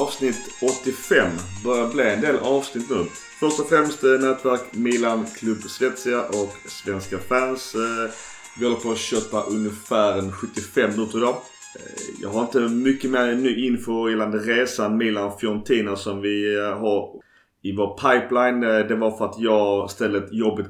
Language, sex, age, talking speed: Swedish, male, 30-49, 150 wpm